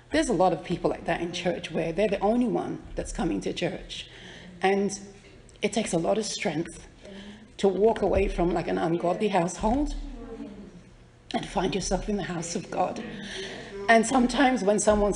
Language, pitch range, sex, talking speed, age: English, 190-250 Hz, female, 180 wpm, 40-59